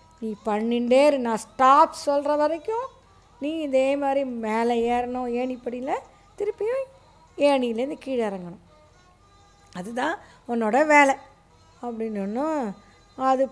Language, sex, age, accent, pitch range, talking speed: Tamil, female, 20-39, native, 210-270 Hz, 100 wpm